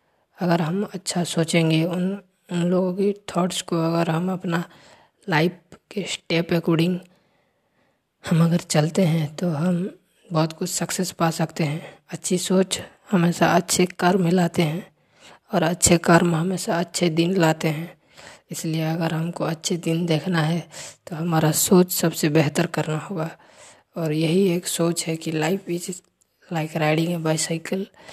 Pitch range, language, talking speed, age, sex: 160-180 Hz, English, 145 wpm, 20-39, female